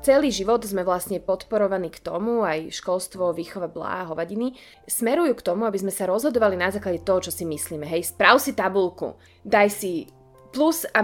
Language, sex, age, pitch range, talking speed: Slovak, female, 30-49, 185-245 Hz, 180 wpm